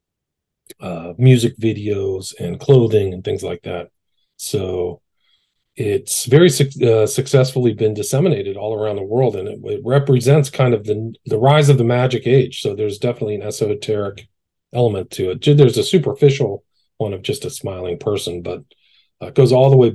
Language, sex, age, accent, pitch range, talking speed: English, male, 40-59, American, 95-130 Hz, 170 wpm